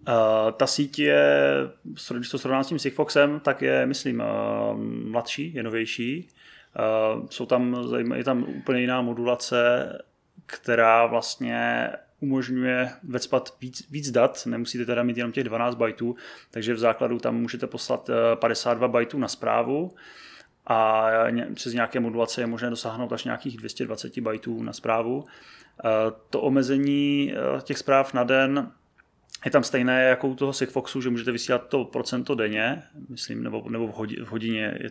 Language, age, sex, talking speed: Czech, 20-39, male, 150 wpm